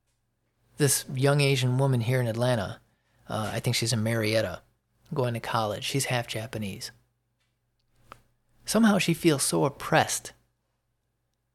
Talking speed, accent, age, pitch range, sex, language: 125 wpm, American, 30-49, 110-135 Hz, male, English